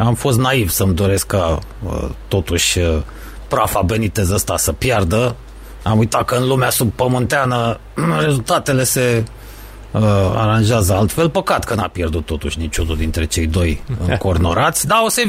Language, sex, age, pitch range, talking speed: Romanian, male, 30-49, 100-145 Hz, 145 wpm